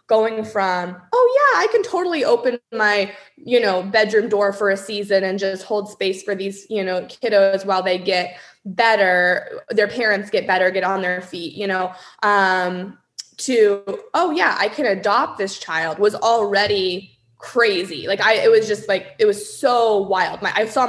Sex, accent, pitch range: female, American, 185-235 Hz